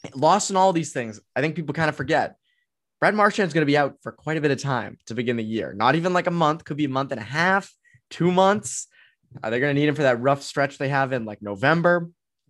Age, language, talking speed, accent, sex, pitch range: 20-39, English, 275 wpm, American, male, 130-175 Hz